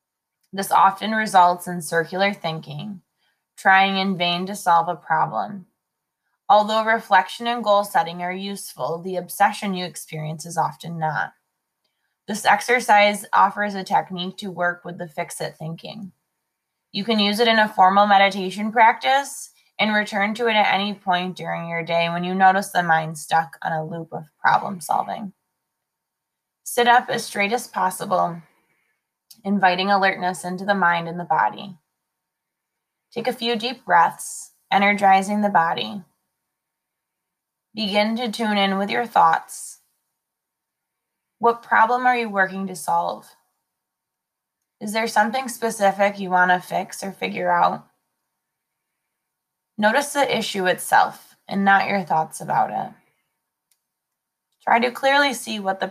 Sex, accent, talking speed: female, American, 145 wpm